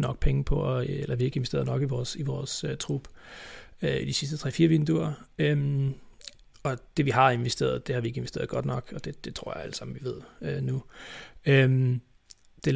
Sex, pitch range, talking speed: male, 120-145 Hz, 220 wpm